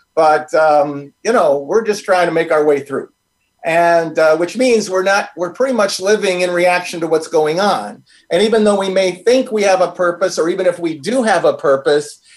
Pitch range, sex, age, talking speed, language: 160-215 Hz, male, 40-59, 225 wpm, English